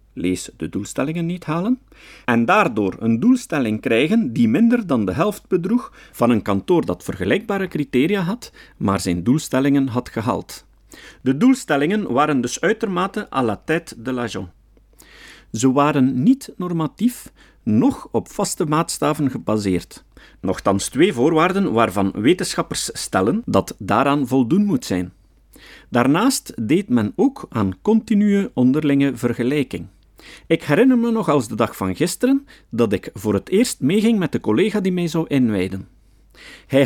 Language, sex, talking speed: Dutch, male, 145 wpm